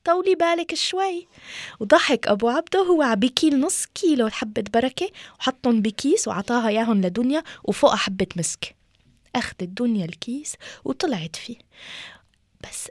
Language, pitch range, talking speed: French, 185-260 Hz, 125 wpm